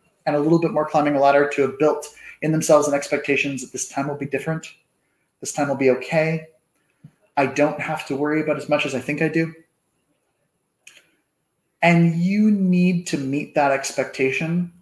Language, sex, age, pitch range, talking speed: English, male, 30-49, 130-155 Hz, 185 wpm